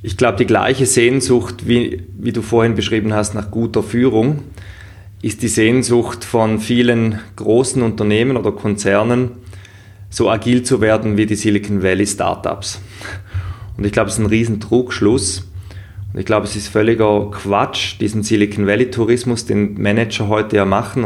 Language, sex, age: German, male, 20-39